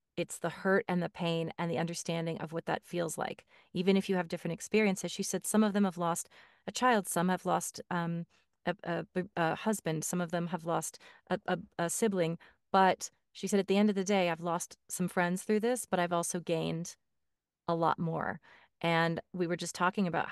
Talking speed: 215 wpm